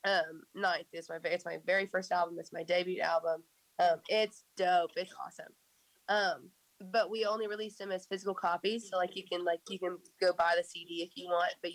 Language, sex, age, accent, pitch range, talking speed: English, female, 20-39, American, 175-215 Hz, 215 wpm